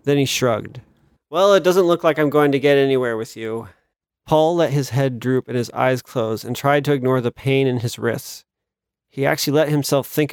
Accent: American